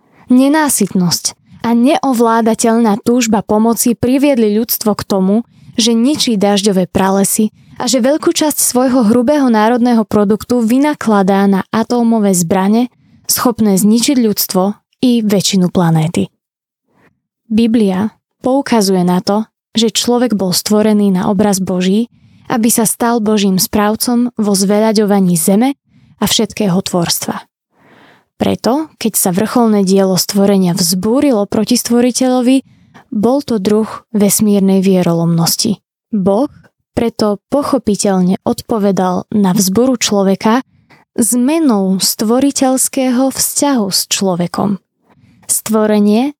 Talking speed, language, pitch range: 105 wpm, Slovak, 200-245 Hz